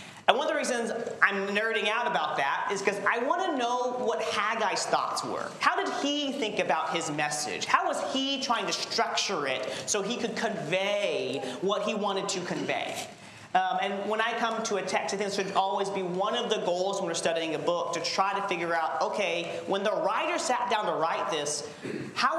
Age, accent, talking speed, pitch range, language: 40-59, American, 215 wpm, 165-215 Hz, English